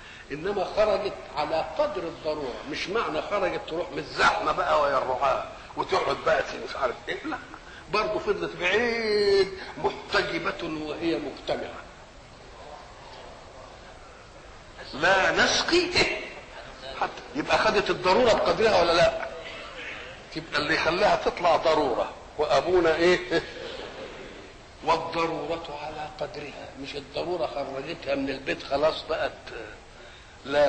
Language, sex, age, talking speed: Arabic, male, 50-69, 105 wpm